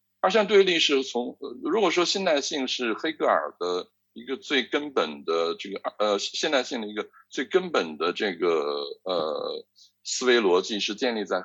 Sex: male